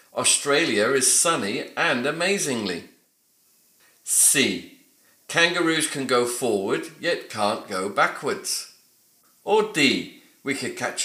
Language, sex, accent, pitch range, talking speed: English, male, British, 110-165 Hz, 105 wpm